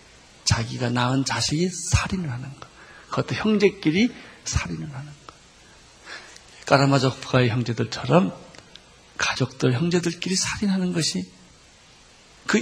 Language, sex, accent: Korean, male, native